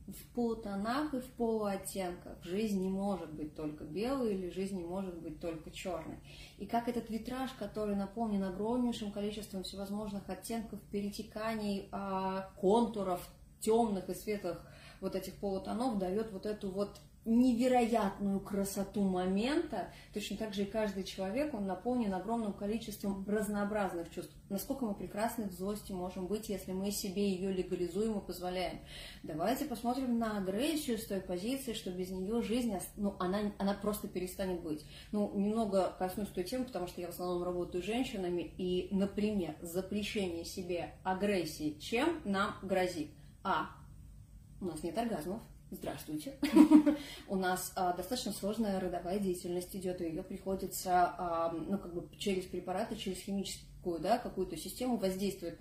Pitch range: 185-220 Hz